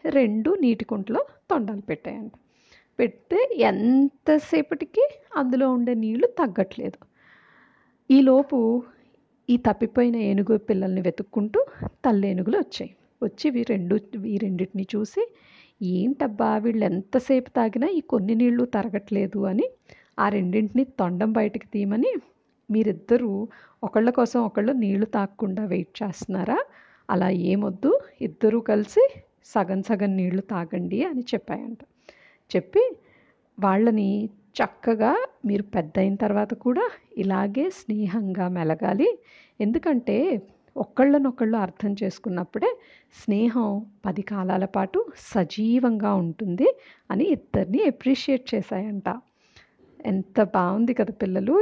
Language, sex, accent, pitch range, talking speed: Telugu, female, native, 200-260 Hz, 100 wpm